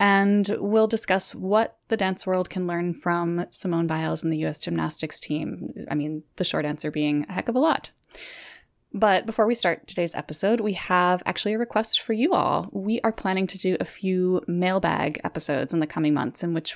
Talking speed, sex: 205 wpm, female